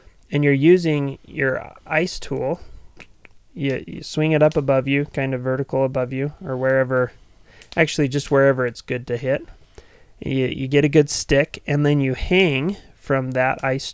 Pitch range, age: 125-145 Hz, 20-39